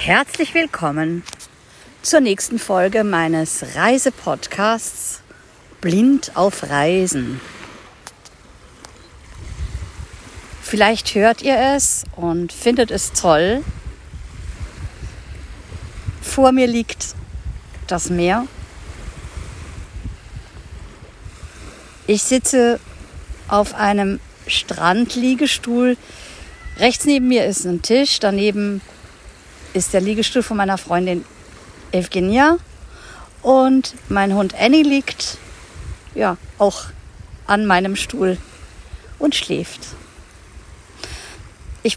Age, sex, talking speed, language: 50-69, female, 80 wpm, German